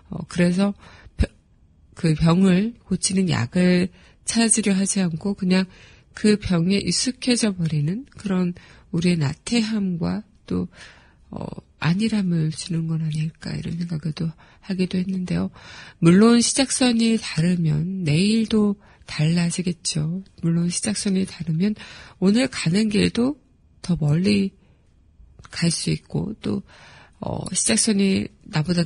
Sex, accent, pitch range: female, native, 170-215 Hz